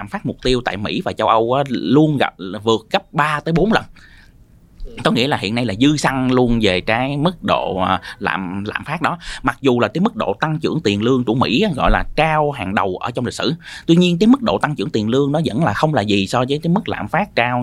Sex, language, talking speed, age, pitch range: male, Vietnamese, 260 wpm, 20-39, 105-155 Hz